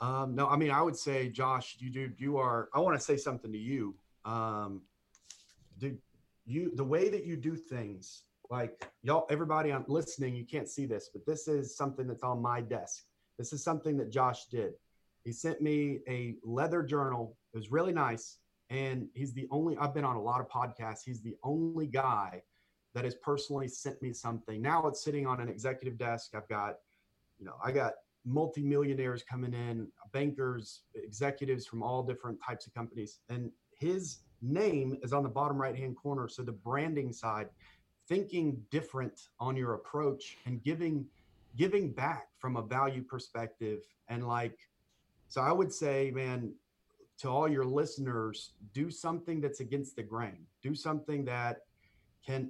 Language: English